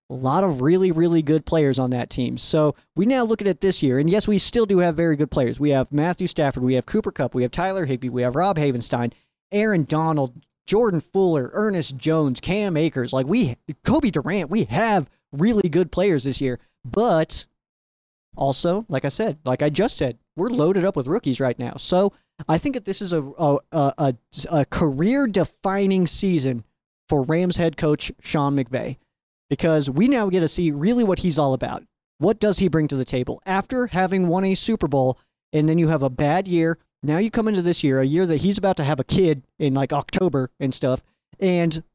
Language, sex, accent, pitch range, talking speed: English, male, American, 135-185 Hz, 210 wpm